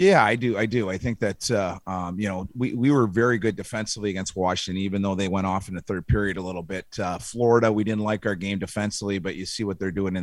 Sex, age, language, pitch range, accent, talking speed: male, 30-49, English, 95-110 Hz, American, 275 wpm